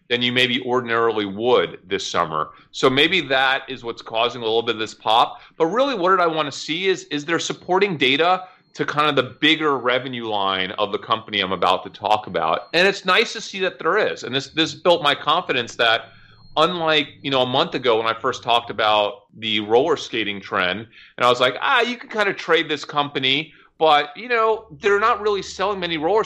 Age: 30-49